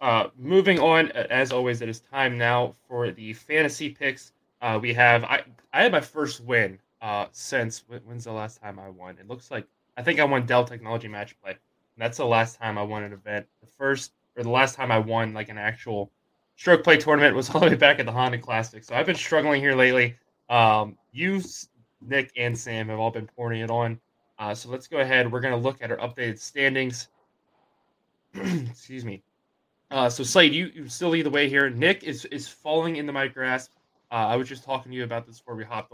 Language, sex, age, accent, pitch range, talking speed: English, male, 20-39, American, 115-135 Hz, 220 wpm